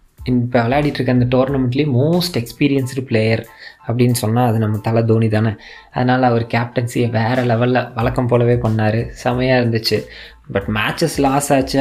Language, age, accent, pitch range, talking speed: Tamil, 20-39, native, 120-150 Hz, 145 wpm